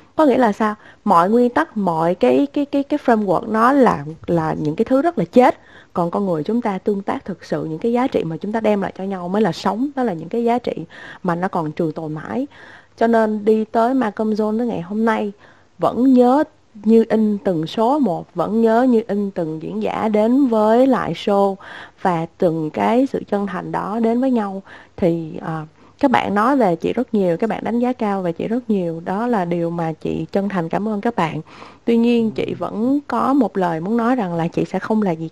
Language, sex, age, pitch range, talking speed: Vietnamese, female, 20-39, 170-235 Hz, 240 wpm